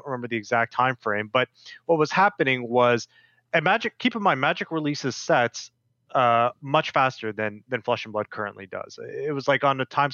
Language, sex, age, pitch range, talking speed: English, male, 30-49, 120-145 Hz, 200 wpm